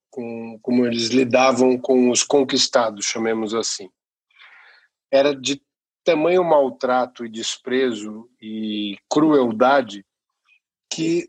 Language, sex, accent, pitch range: Portuguese, male, Brazilian, 125-150 Hz